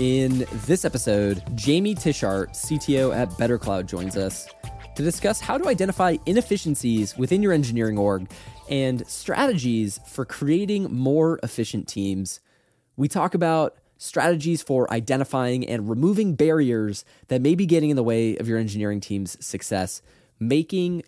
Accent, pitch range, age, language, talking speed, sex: American, 105-145 Hz, 20-39, English, 140 wpm, male